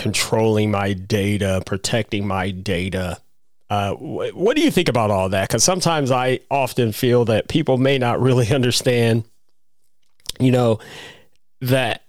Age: 40-59